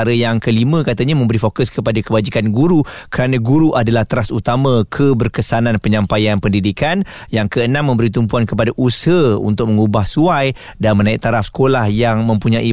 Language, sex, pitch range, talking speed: Malay, male, 110-145 Hz, 145 wpm